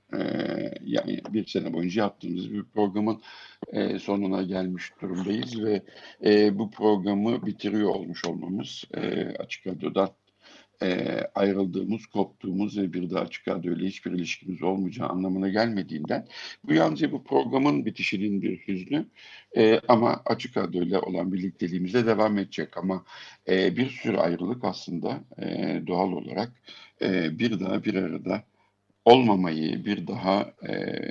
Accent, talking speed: native, 130 wpm